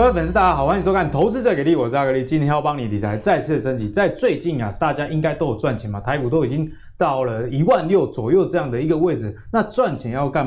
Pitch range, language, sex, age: 120-170 Hz, Chinese, male, 20-39